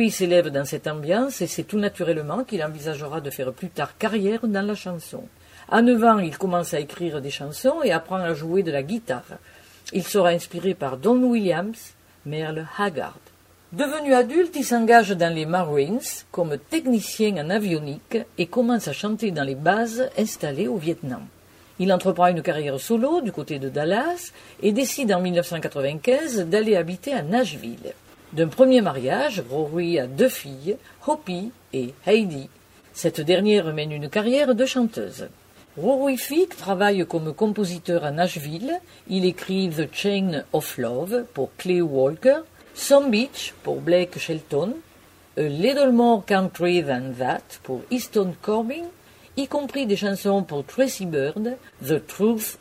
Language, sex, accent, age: French, female, French, 50-69